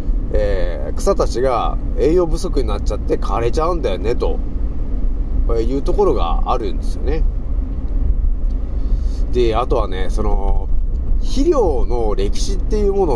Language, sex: Japanese, male